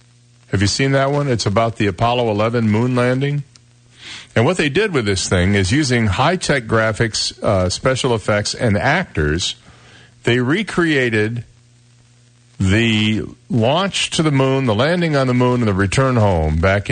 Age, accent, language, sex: 50-69, American, English, male